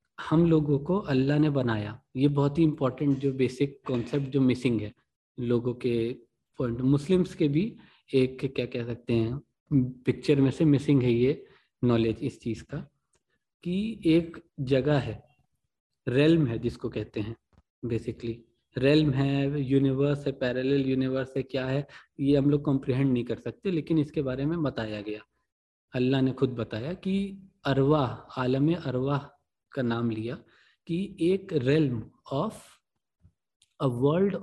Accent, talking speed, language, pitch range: native, 150 wpm, Hindi, 120-155 Hz